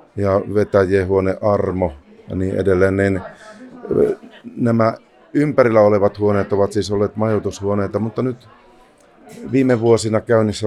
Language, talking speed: Finnish, 110 wpm